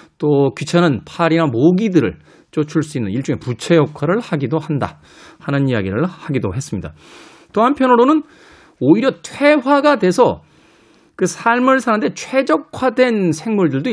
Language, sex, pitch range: Korean, male, 140-195 Hz